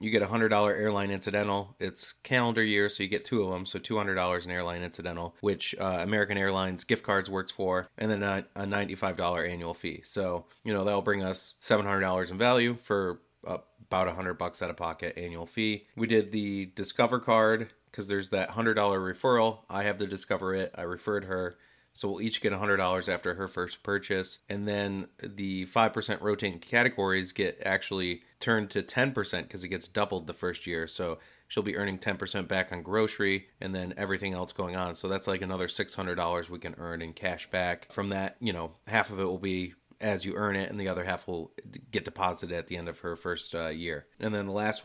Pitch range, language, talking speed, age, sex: 90-105 Hz, English, 205 wpm, 30-49, male